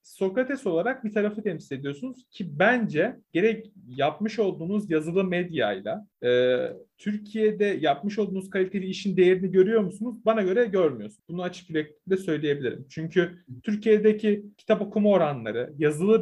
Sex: male